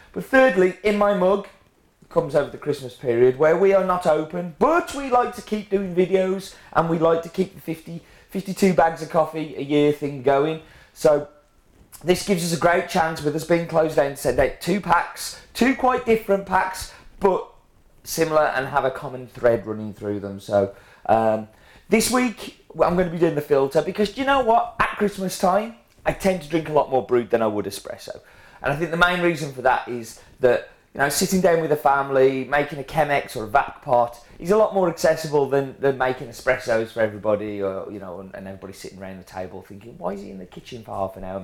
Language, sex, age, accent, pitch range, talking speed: English, male, 30-49, British, 120-185 Hz, 225 wpm